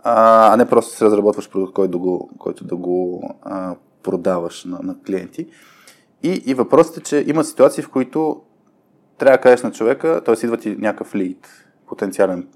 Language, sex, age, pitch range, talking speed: Bulgarian, male, 20-39, 100-145 Hz, 170 wpm